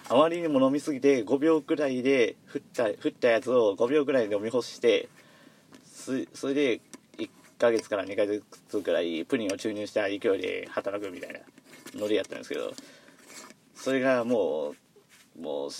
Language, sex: Japanese, male